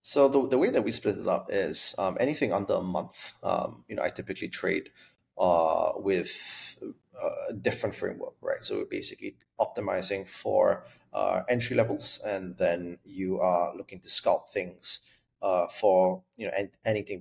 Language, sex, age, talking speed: English, male, 20-39, 170 wpm